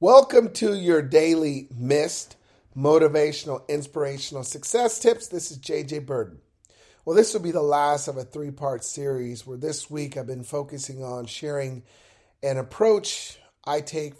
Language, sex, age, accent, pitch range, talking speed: English, male, 40-59, American, 130-165 Hz, 150 wpm